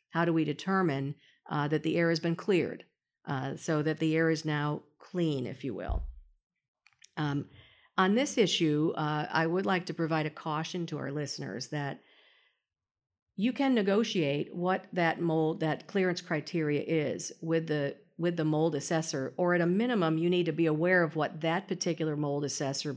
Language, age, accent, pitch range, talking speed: English, 50-69, American, 145-180 Hz, 180 wpm